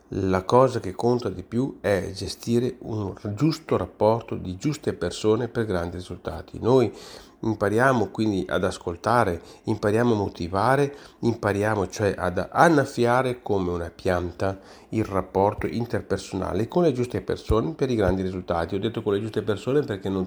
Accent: native